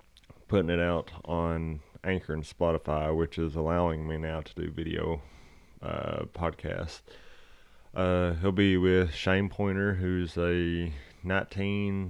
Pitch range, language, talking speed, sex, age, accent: 75-90 Hz, English, 130 wpm, male, 30-49, American